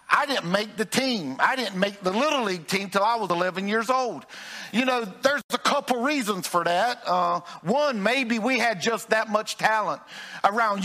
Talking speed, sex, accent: 200 wpm, male, American